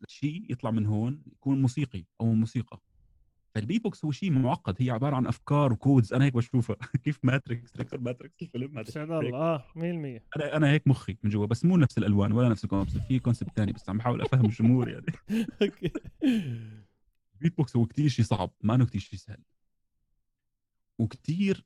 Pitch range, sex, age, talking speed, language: 105-135 Hz, male, 30-49, 175 wpm, Arabic